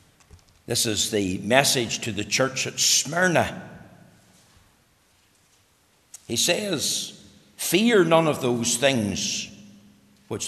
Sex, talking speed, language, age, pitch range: male, 95 wpm, English, 60-79, 125-210 Hz